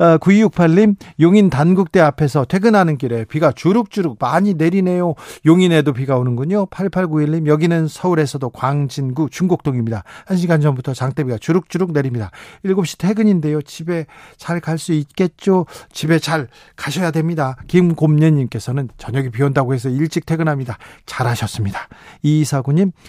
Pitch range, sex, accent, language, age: 135-175 Hz, male, native, Korean, 40-59